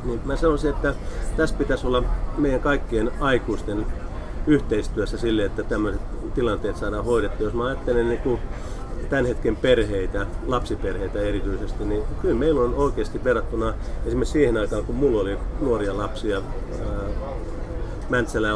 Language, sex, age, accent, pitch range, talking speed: Finnish, male, 30-49, native, 105-130 Hz, 135 wpm